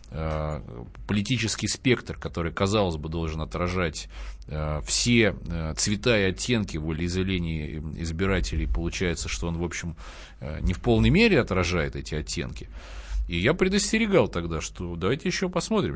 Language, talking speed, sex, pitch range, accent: Russian, 125 wpm, male, 80-120 Hz, native